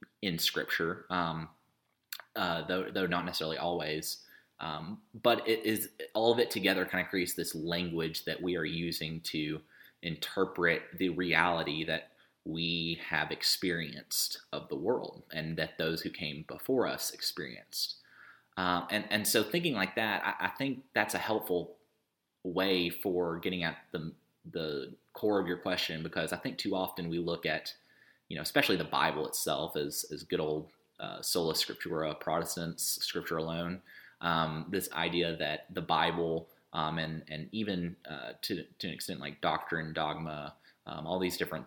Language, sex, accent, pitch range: English, male, American, 80-90 Hz